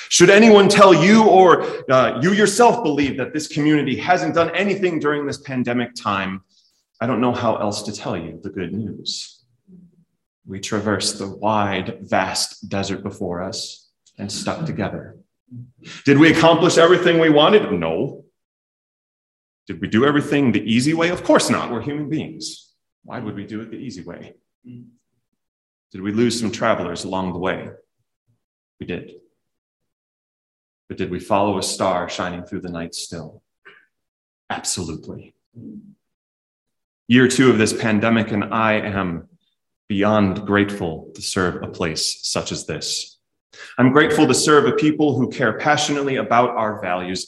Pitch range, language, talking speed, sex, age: 100-150 Hz, English, 150 wpm, male, 30-49